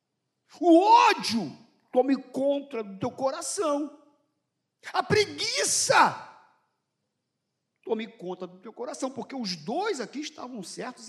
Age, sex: 50-69, male